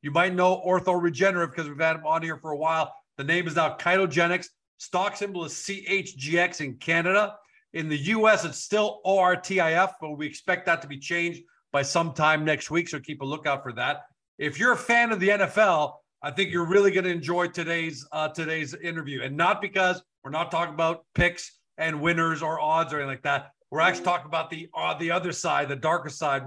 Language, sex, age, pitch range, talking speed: English, male, 40-59, 150-180 Hz, 210 wpm